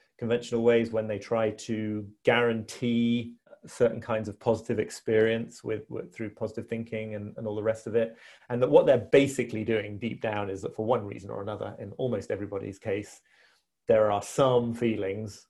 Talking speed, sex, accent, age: 180 wpm, male, British, 30-49